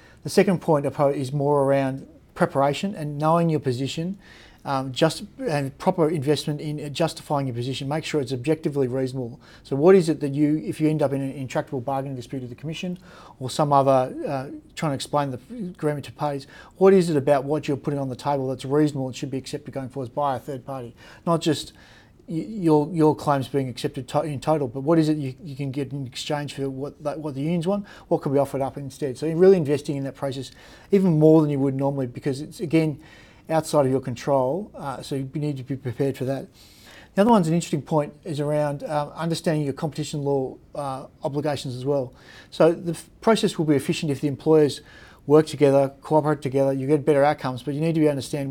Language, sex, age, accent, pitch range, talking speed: English, male, 30-49, Australian, 135-155 Hz, 220 wpm